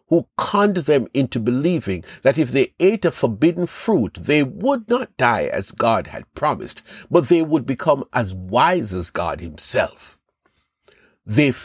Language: English